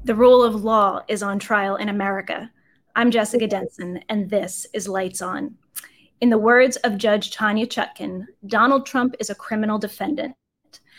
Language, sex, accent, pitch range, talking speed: English, female, American, 200-240 Hz, 165 wpm